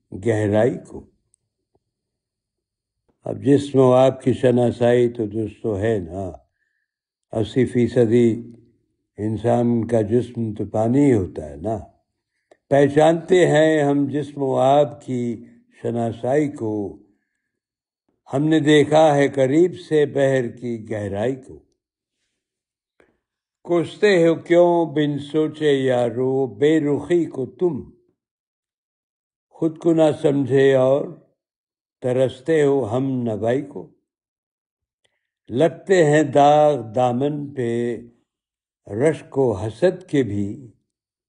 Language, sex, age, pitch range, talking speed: Urdu, male, 60-79, 115-150 Hz, 105 wpm